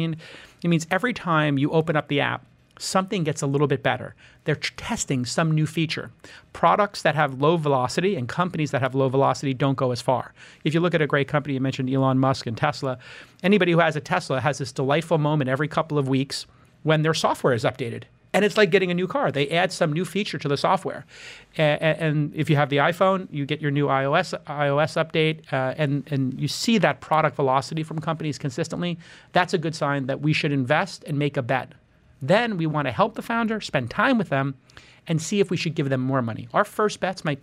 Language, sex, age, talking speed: English, male, 30-49, 230 wpm